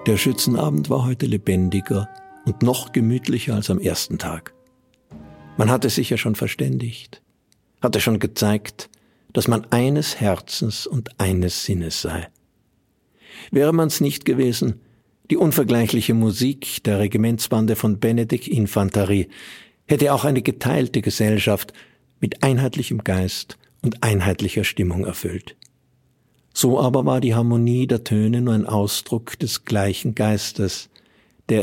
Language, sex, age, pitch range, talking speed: German, male, 60-79, 100-125 Hz, 125 wpm